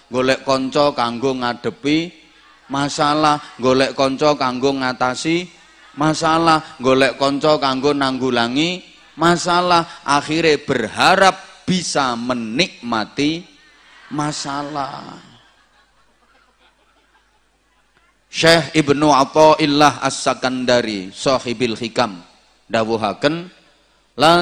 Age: 30-49